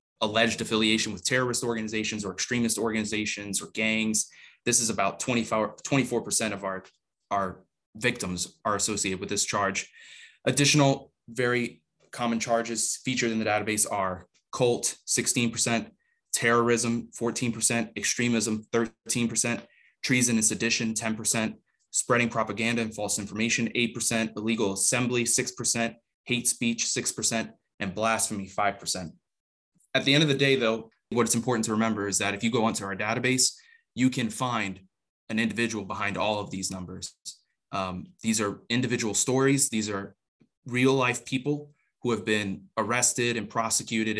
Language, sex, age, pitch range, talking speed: English, male, 20-39, 100-120 Hz, 140 wpm